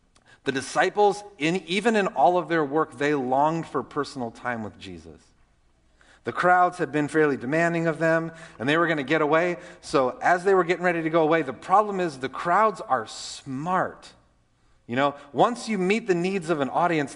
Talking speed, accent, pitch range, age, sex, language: 195 wpm, American, 125-175 Hz, 30-49, male, English